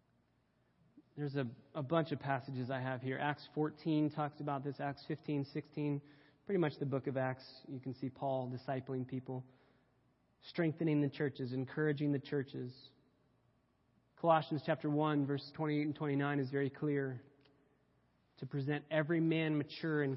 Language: English